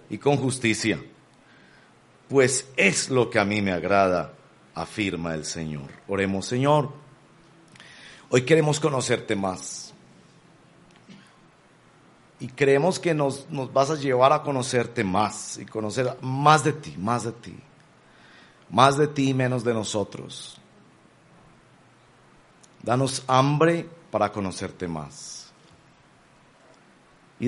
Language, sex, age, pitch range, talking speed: Spanish, male, 50-69, 110-145 Hz, 115 wpm